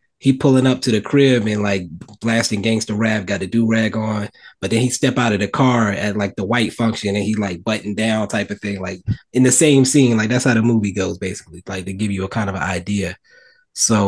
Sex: male